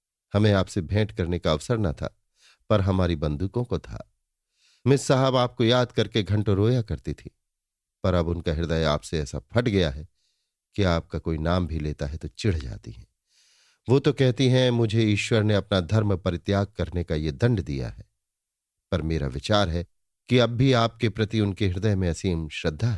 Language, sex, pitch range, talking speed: Hindi, male, 85-110 Hz, 190 wpm